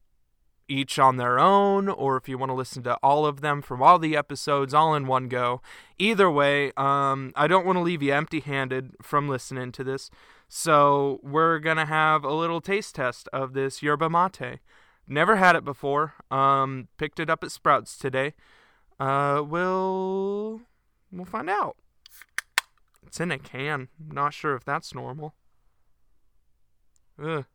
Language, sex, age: English, male, 20-39